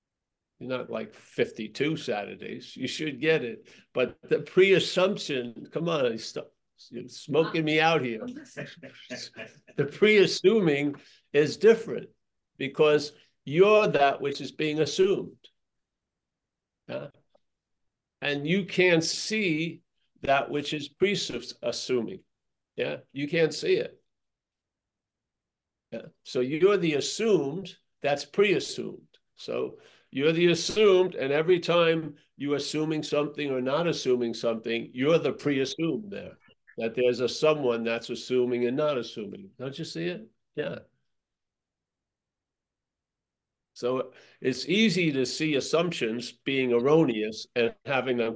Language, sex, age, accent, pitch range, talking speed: English, male, 60-79, American, 125-180 Hz, 115 wpm